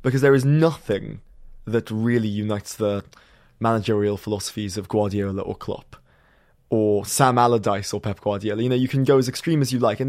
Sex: male